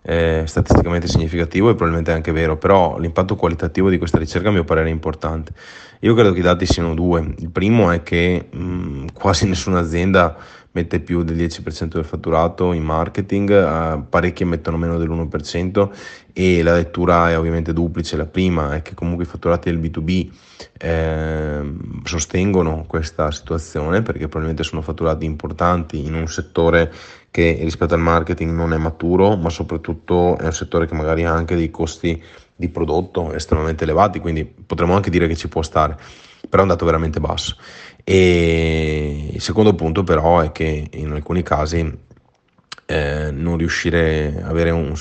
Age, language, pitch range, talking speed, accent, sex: 30-49, Italian, 80-90 Hz, 165 wpm, native, male